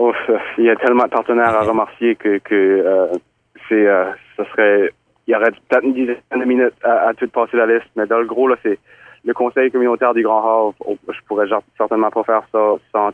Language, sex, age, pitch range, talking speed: French, male, 30-49, 105-125 Hz, 210 wpm